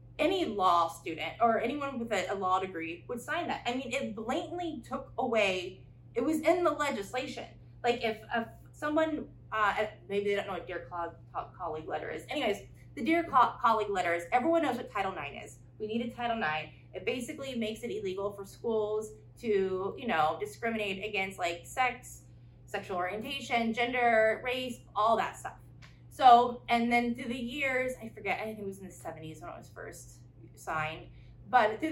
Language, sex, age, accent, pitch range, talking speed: English, female, 20-39, American, 165-240 Hz, 180 wpm